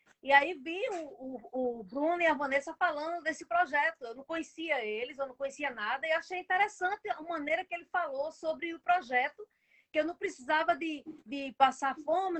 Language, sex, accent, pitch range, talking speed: Portuguese, female, Brazilian, 275-345 Hz, 195 wpm